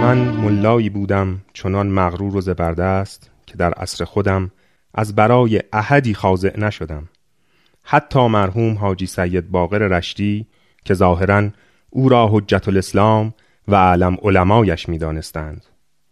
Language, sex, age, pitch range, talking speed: Persian, male, 30-49, 95-125 Hz, 125 wpm